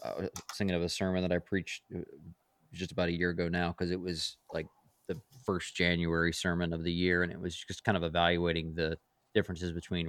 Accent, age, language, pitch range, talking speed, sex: American, 20-39, English, 85-95 Hz, 215 wpm, male